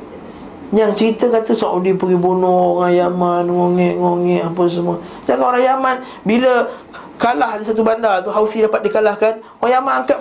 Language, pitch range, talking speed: Malay, 170-235 Hz, 155 wpm